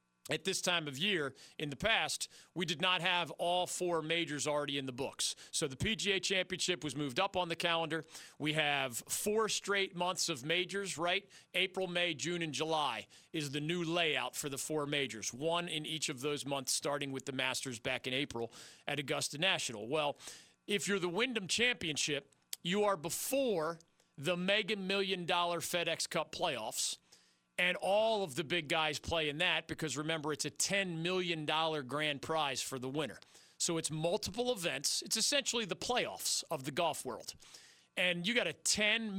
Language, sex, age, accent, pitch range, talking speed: English, male, 40-59, American, 150-190 Hz, 180 wpm